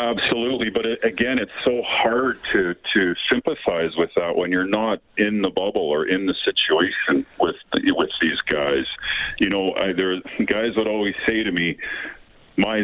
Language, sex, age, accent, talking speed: English, male, 50-69, American, 170 wpm